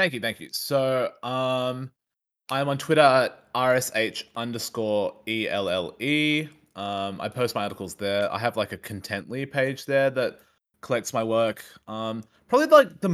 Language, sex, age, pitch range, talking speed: English, male, 20-39, 95-125 Hz, 150 wpm